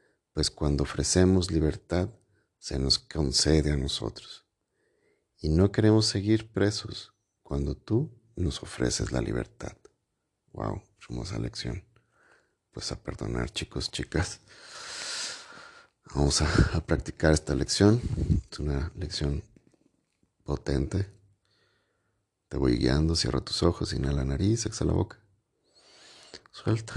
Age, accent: 50-69, Mexican